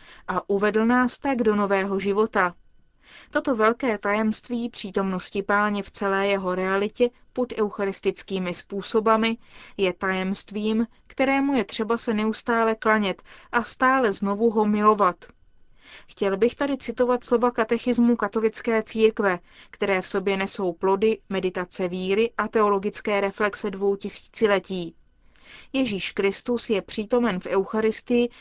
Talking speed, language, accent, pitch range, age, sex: 125 wpm, Czech, native, 200-235 Hz, 30-49, female